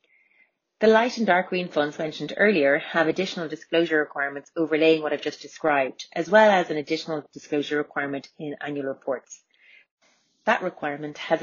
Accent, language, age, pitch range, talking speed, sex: Irish, English, 30-49, 150-185 Hz, 160 wpm, female